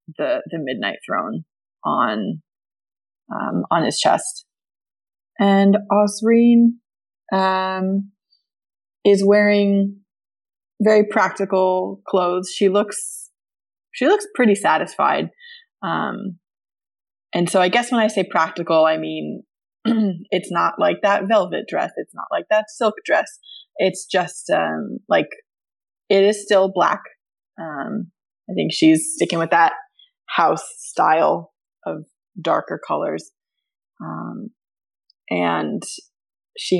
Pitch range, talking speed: 175-230 Hz, 115 wpm